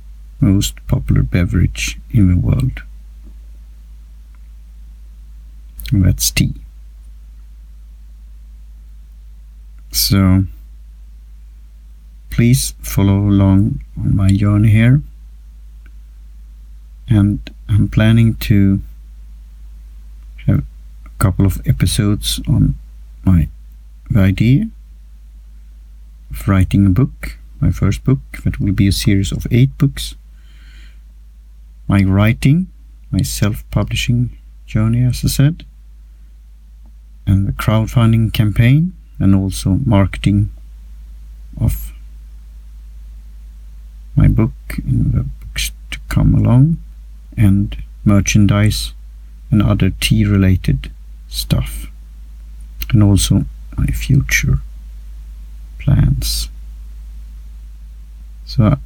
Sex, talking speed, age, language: male, 85 wpm, 50-69, English